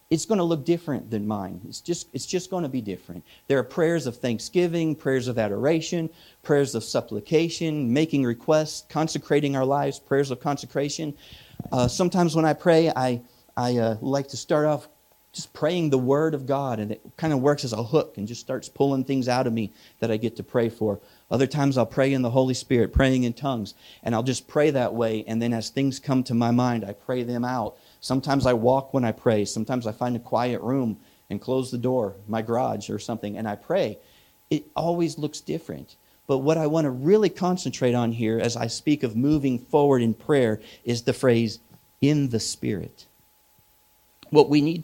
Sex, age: male, 40-59